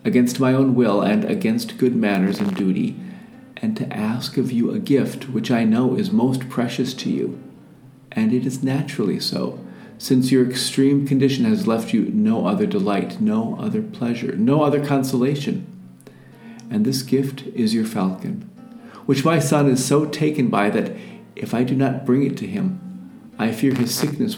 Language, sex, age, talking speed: English, male, 50-69, 175 wpm